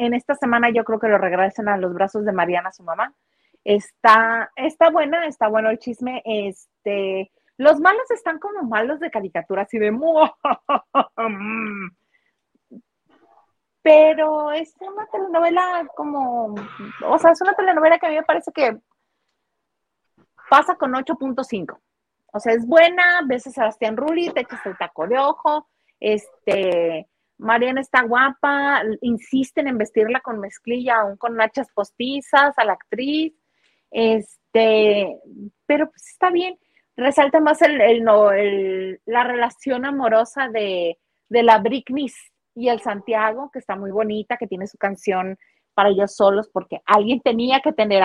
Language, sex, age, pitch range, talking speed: Spanish, female, 30-49, 210-285 Hz, 145 wpm